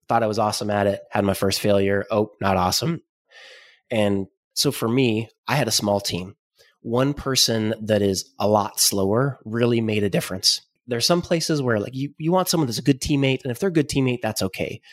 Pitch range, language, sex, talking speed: 105-125 Hz, English, male, 220 wpm